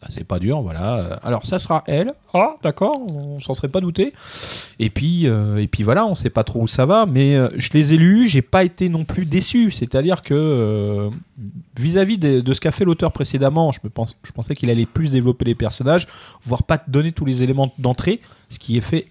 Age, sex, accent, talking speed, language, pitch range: 30-49, male, French, 230 wpm, French, 105-140 Hz